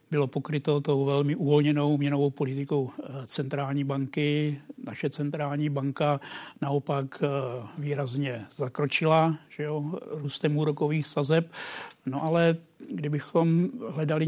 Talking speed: 90 wpm